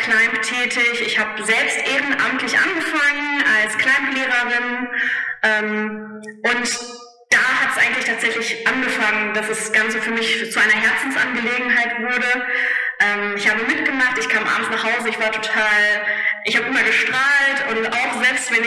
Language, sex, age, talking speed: German, female, 20-39, 150 wpm